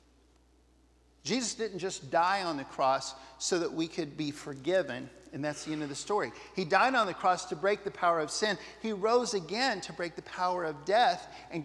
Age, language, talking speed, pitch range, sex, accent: 50-69, English, 210 wpm, 160-215 Hz, male, American